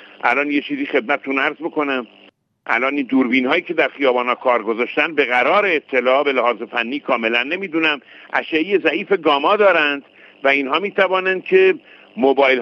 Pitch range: 130-185 Hz